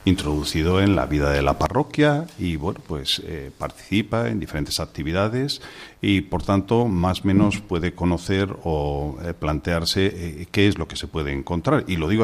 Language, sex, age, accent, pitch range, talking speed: Spanish, male, 50-69, Spanish, 85-105 Hz, 180 wpm